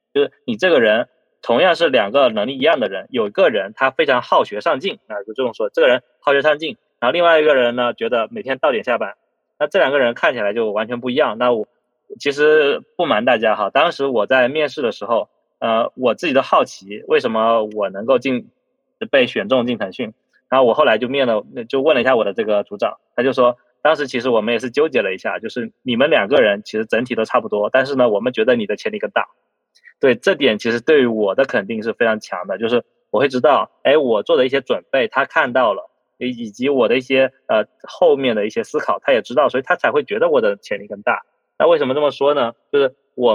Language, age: Chinese, 20-39